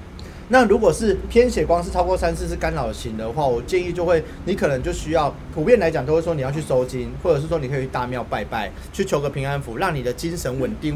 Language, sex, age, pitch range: Chinese, male, 30-49, 135-190 Hz